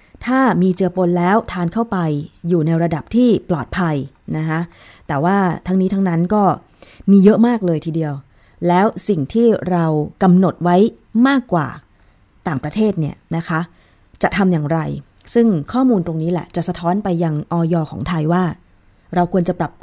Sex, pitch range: female, 165-210 Hz